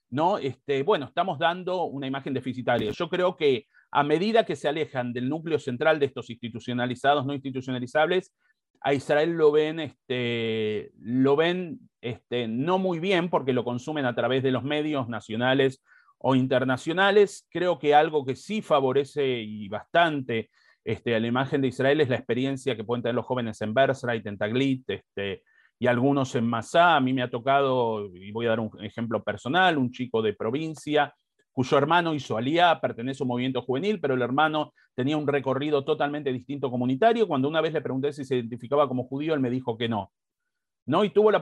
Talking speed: 190 wpm